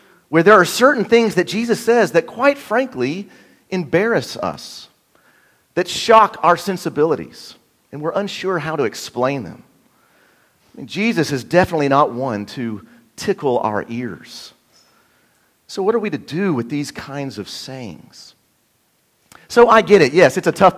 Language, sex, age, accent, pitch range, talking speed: English, male, 40-59, American, 125-190 Hz, 150 wpm